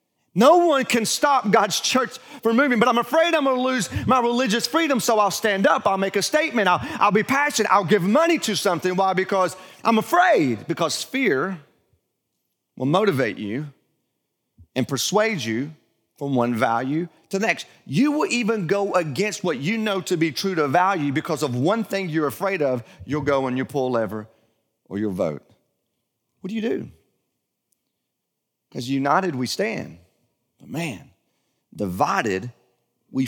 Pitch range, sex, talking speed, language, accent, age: 130-210 Hz, male, 170 wpm, English, American, 40-59